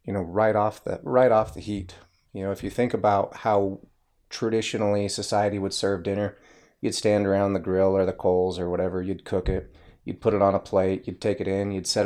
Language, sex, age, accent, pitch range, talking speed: English, male, 30-49, American, 95-110 Hz, 230 wpm